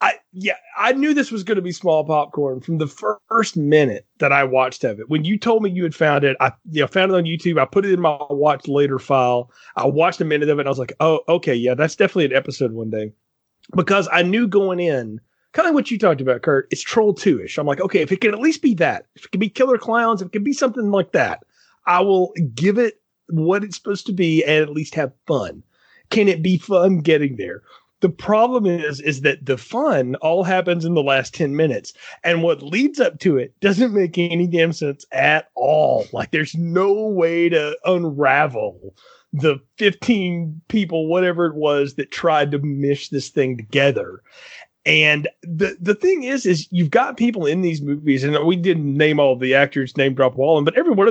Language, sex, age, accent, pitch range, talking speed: English, male, 30-49, American, 140-195 Hz, 225 wpm